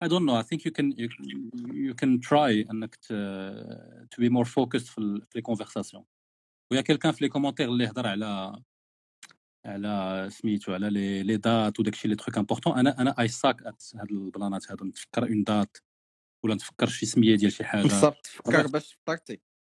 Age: 40-59